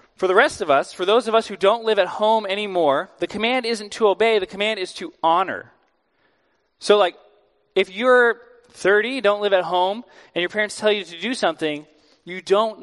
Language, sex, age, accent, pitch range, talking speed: English, male, 30-49, American, 175-220 Hz, 205 wpm